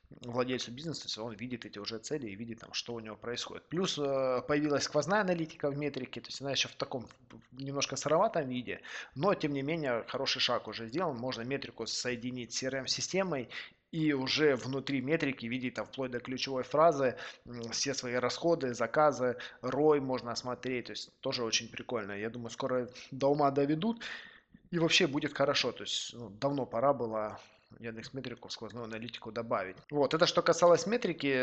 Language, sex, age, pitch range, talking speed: Russian, male, 20-39, 125-155 Hz, 170 wpm